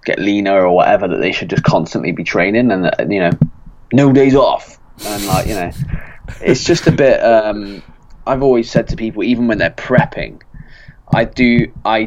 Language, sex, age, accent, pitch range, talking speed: English, male, 20-39, British, 95-120 Hz, 190 wpm